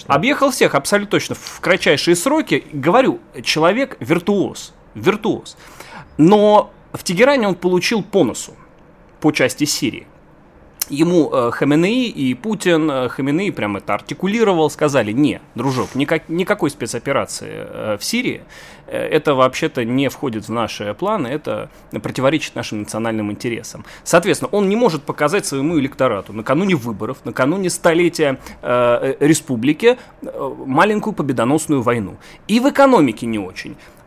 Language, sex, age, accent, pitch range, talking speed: Russian, male, 30-49, native, 130-205 Hz, 120 wpm